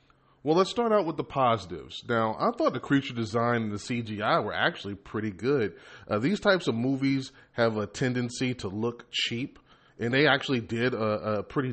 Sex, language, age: male, English, 30-49